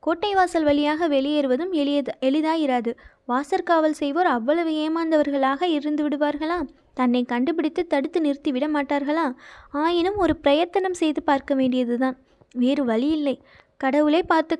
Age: 20-39